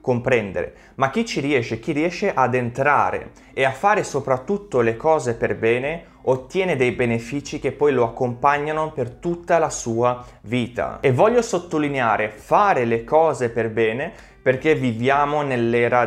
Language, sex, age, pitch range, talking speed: Italian, male, 20-39, 120-165 Hz, 150 wpm